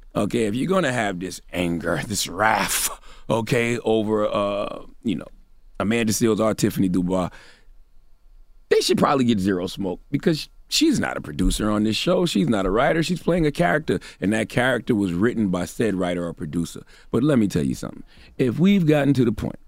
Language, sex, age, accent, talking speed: English, male, 30-49, American, 190 wpm